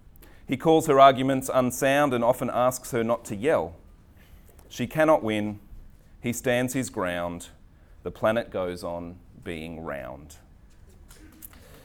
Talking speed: 125 wpm